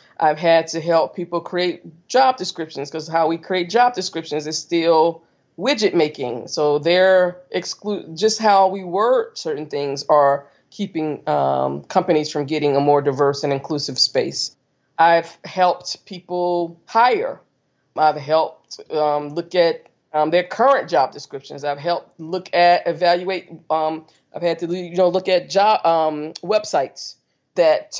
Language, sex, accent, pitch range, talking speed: English, female, American, 160-200 Hz, 150 wpm